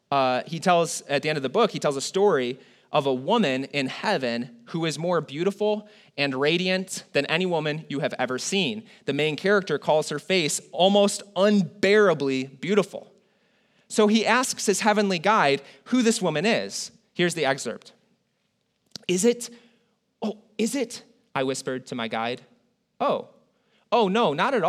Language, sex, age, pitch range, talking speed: English, male, 30-49, 145-210 Hz, 165 wpm